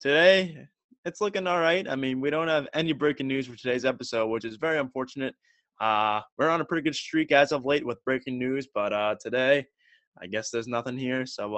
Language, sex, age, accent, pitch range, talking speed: English, male, 20-39, American, 115-145 Hz, 220 wpm